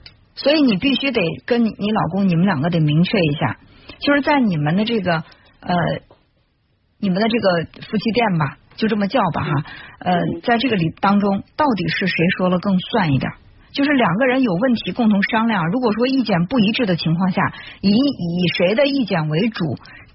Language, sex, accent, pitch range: Chinese, female, native, 175-235 Hz